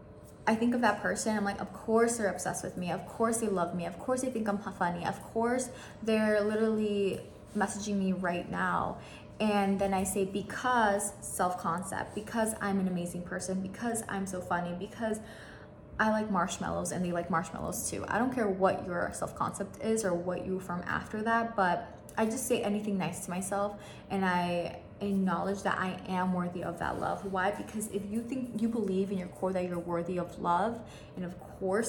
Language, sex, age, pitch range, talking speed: English, female, 20-39, 185-225 Hz, 200 wpm